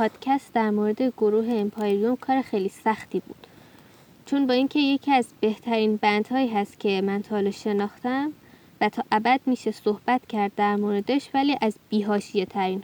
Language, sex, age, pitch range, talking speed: Persian, female, 10-29, 210-255 Hz, 155 wpm